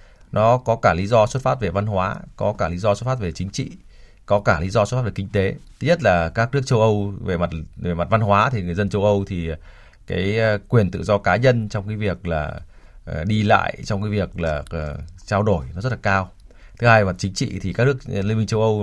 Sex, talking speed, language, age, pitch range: male, 260 wpm, Vietnamese, 20-39, 90-115 Hz